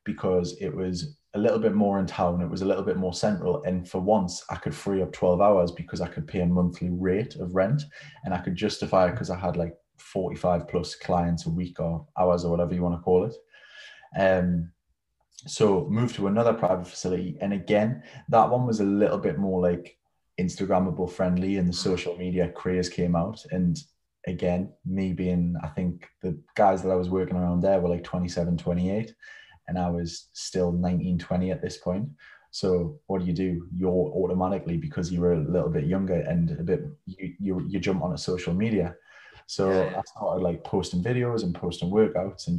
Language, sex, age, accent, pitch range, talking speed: English, male, 20-39, British, 90-100 Hz, 205 wpm